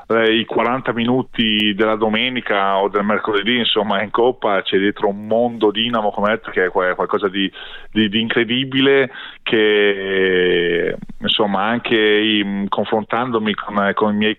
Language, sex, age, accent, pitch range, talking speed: Italian, male, 20-39, native, 95-115 Hz, 140 wpm